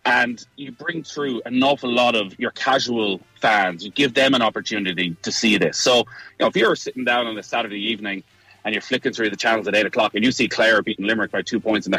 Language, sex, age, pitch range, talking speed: English, male, 30-49, 105-130 Hz, 250 wpm